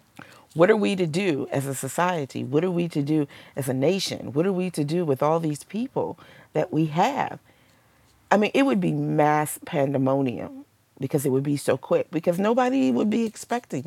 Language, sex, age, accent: English, female, 40-59, American